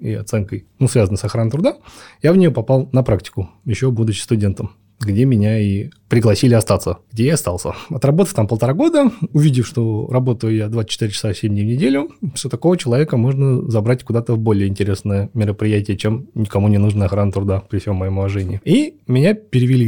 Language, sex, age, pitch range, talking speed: Russian, male, 20-39, 105-130 Hz, 185 wpm